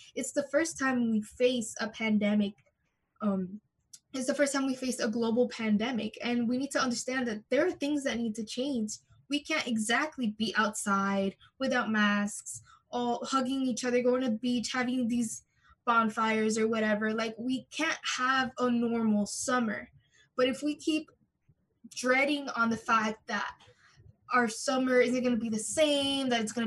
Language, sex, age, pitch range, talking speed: English, female, 10-29, 220-265 Hz, 175 wpm